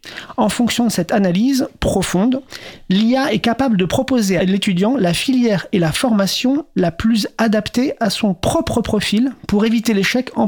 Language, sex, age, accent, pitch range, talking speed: French, male, 40-59, French, 190-235 Hz, 165 wpm